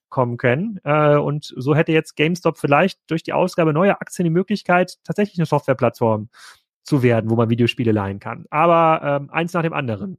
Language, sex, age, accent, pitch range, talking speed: German, male, 30-49, German, 115-145 Hz, 175 wpm